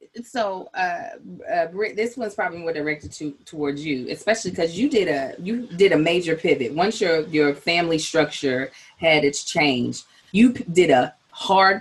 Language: English